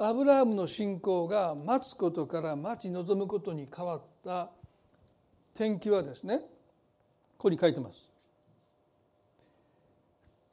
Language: Japanese